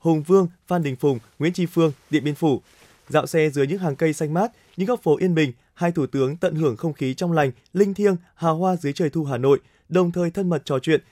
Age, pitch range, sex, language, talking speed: 20-39, 145-180 Hz, male, Vietnamese, 260 wpm